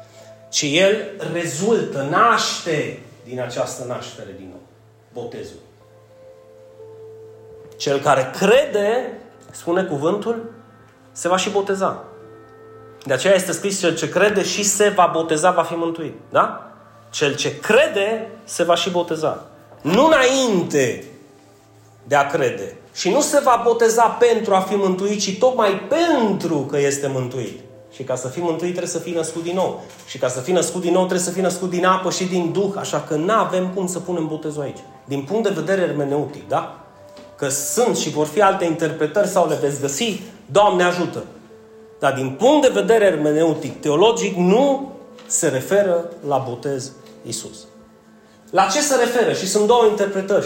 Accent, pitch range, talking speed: native, 145-210 Hz, 160 wpm